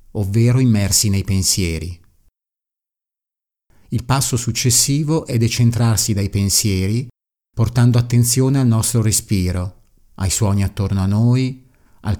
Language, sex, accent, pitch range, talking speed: Italian, male, native, 95-115 Hz, 110 wpm